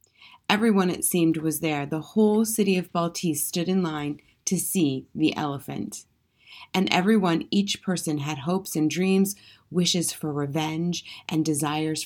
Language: English